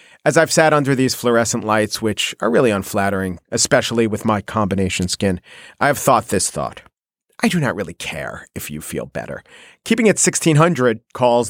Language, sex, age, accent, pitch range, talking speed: English, male, 40-59, American, 110-150 Hz, 175 wpm